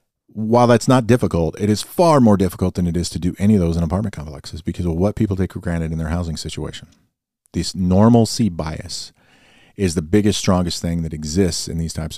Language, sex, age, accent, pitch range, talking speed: English, male, 40-59, American, 80-100 Hz, 215 wpm